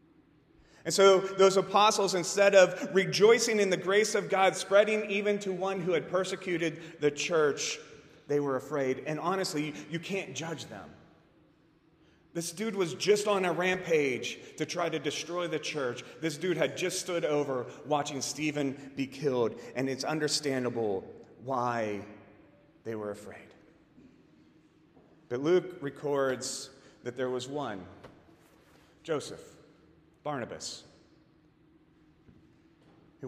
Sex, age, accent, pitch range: male, 30-49, American, 125-175 Hz